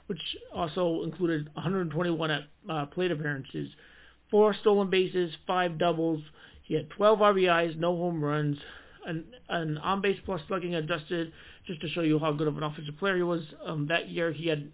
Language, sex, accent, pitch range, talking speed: English, male, American, 155-190 Hz, 175 wpm